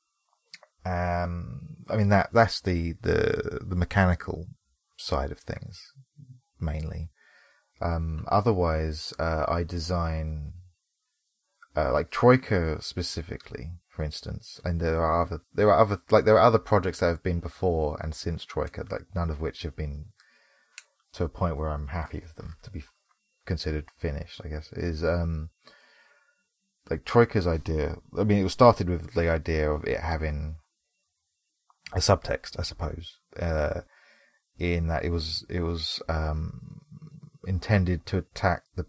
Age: 20-39